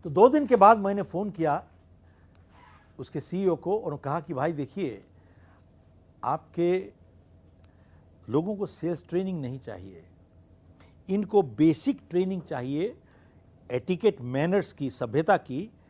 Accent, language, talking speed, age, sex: native, Hindi, 120 wpm, 60-79, male